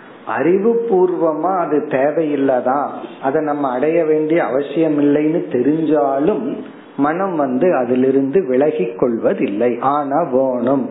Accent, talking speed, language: native, 55 wpm, Tamil